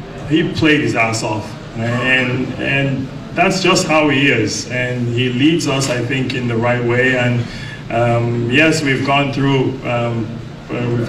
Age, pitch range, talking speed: 20-39, 115-130 Hz, 160 wpm